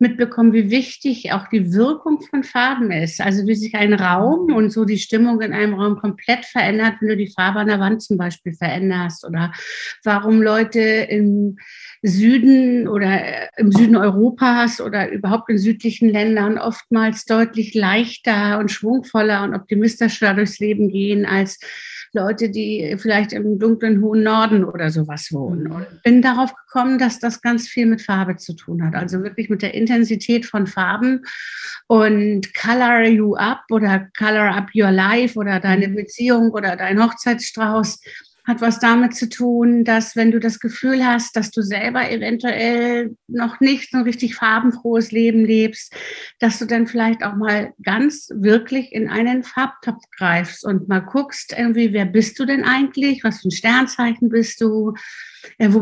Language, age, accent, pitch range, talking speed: German, 50-69, German, 205-240 Hz, 165 wpm